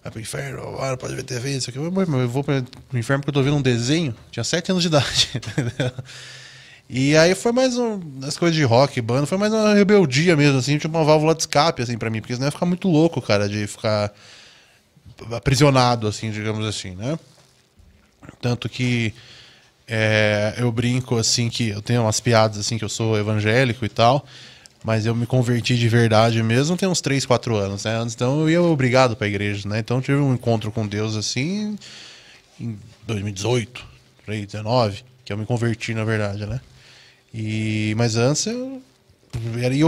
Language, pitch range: Portuguese, 115-150 Hz